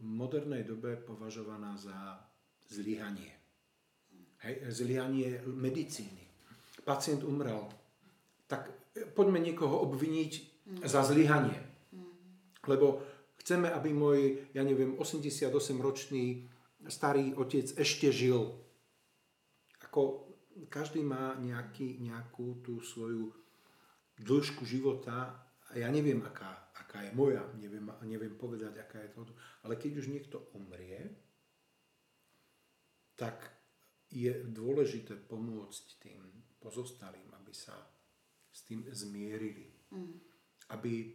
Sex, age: male, 40-59